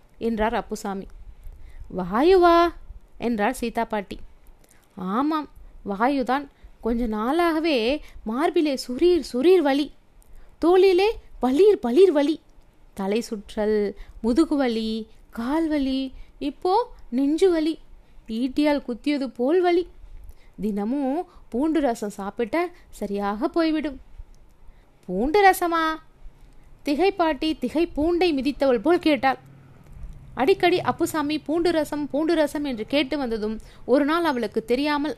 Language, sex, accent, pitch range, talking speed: Tamil, female, native, 230-315 Hz, 85 wpm